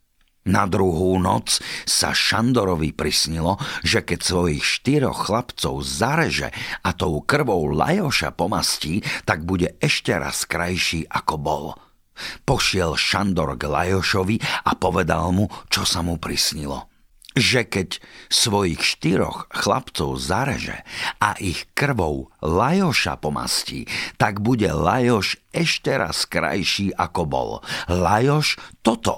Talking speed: 115 wpm